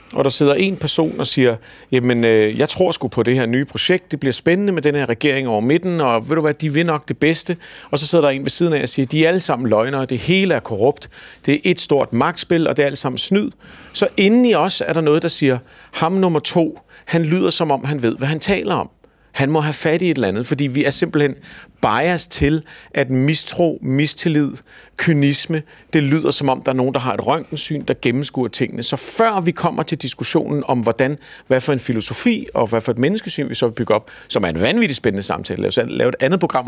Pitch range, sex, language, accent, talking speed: 130-165 Hz, male, Danish, native, 245 wpm